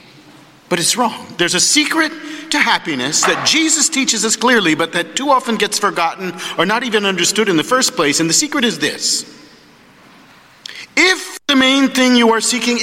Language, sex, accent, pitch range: English, male, American, 165-245 Hz